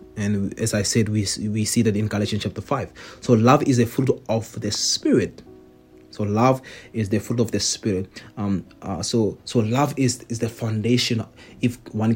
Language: English